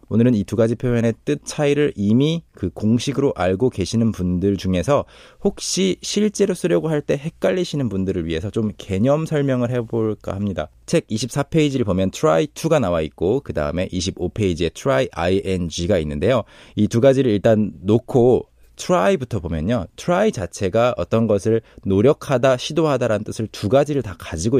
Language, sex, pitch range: Korean, male, 95-140 Hz